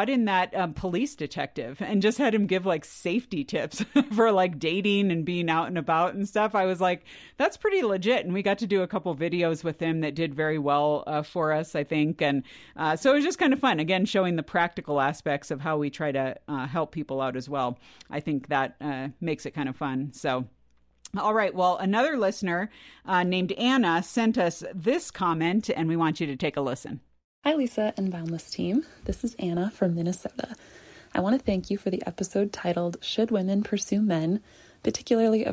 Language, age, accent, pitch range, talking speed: English, 40-59, American, 160-200 Hz, 215 wpm